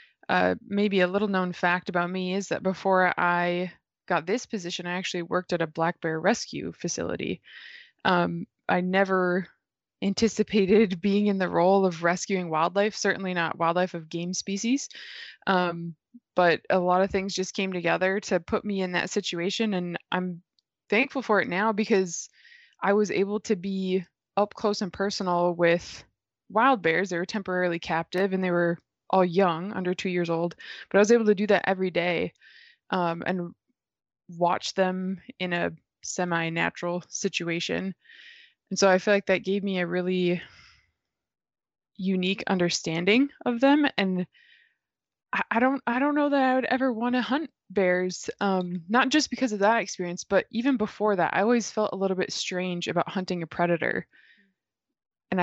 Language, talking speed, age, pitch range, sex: English, 170 wpm, 20-39, 175-210 Hz, female